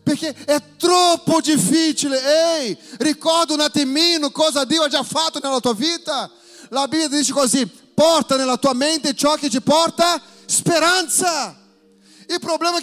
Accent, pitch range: Brazilian, 265-345 Hz